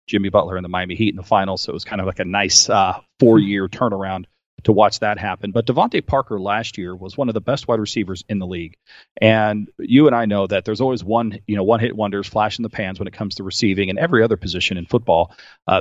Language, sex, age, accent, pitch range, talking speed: English, male, 40-59, American, 95-115 Hz, 260 wpm